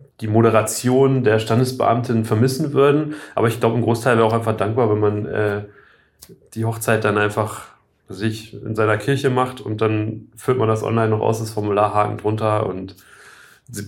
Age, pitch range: 30-49, 105-125 Hz